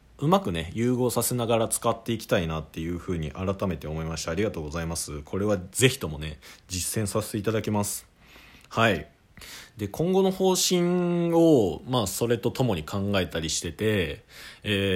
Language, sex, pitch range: Japanese, male, 85-125 Hz